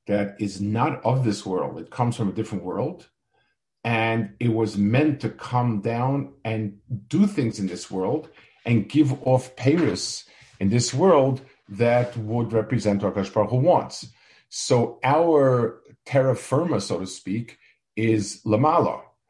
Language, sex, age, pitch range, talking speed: English, male, 50-69, 105-130 Hz, 145 wpm